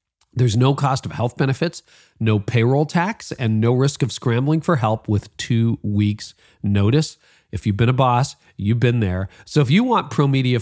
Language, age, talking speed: English, 40-59, 190 wpm